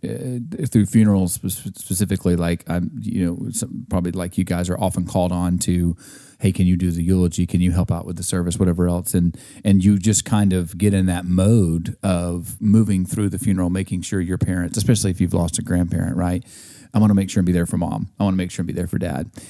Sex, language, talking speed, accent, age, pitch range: male, English, 235 wpm, American, 30-49, 90-100 Hz